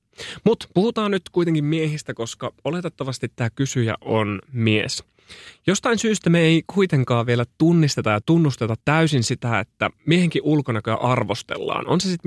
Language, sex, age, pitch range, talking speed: Finnish, male, 30-49, 110-155 Hz, 140 wpm